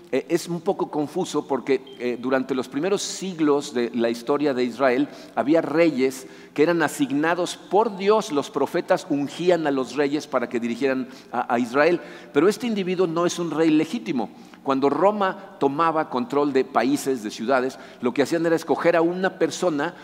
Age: 50-69